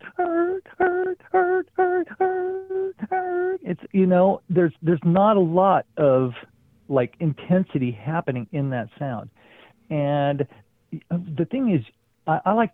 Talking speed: 105 wpm